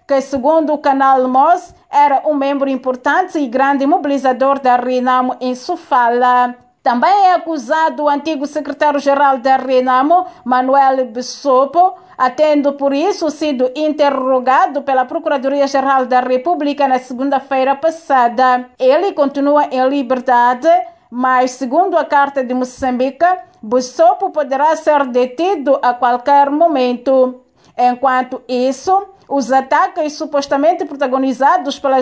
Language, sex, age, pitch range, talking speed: Portuguese, female, 40-59, 255-315 Hz, 120 wpm